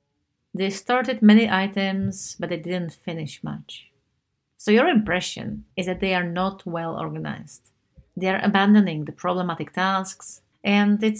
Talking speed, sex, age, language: 145 wpm, female, 30-49, English